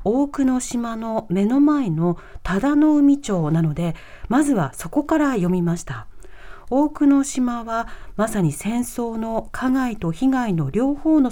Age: 40-59